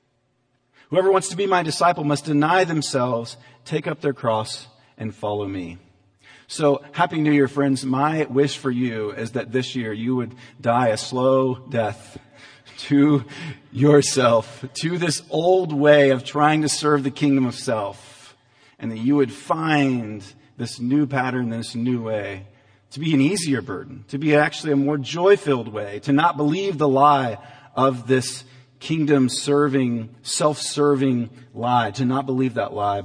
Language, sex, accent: English, male, American